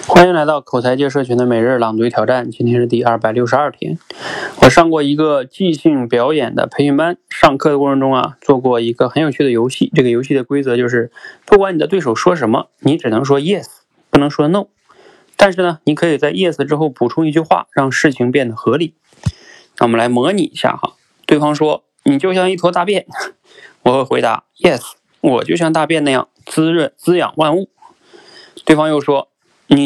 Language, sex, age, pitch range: Chinese, male, 20-39, 130-175 Hz